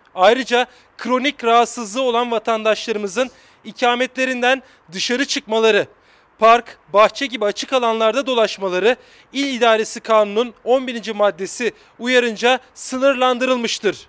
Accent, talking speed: native, 90 wpm